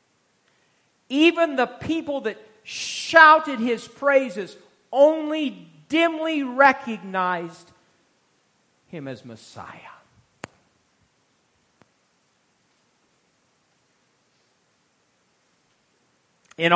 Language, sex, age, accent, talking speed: English, male, 50-69, American, 50 wpm